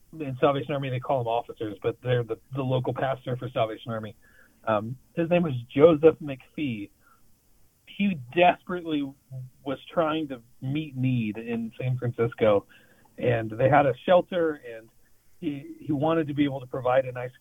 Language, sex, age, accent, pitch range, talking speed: English, male, 40-59, American, 120-155 Hz, 165 wpm